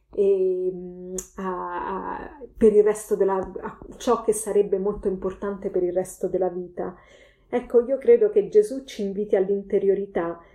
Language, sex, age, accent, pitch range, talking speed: Italian, female, 30-49, native, 190-220 Hz, 140 wpm